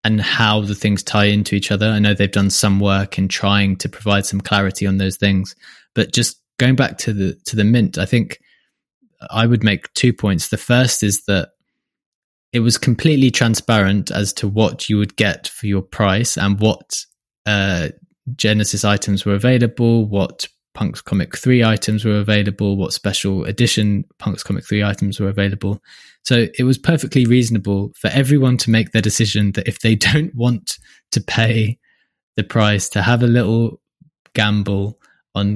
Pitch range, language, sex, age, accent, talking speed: 100-120 Hz, English, male, 20-39, British, 175 wpm